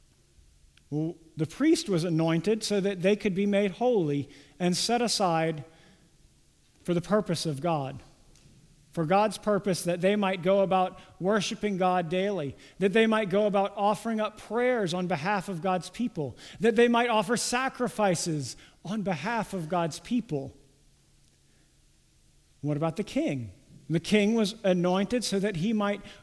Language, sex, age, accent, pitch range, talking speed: English, male, 50-69, American, 160-210 Hz, 150 wpm